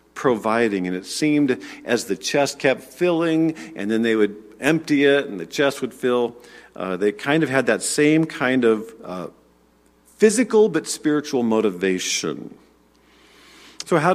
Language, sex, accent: English, male, American